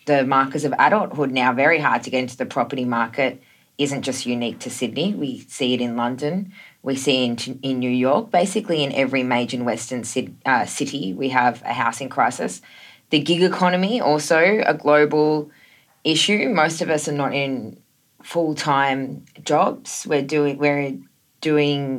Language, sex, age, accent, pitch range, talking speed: English, female, 20-39, Australian, 130-165 Hz, 165 wpm